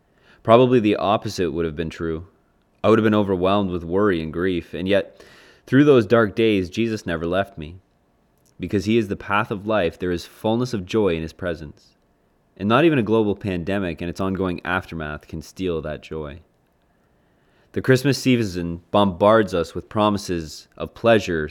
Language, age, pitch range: English, 20-39, 85-105 Hz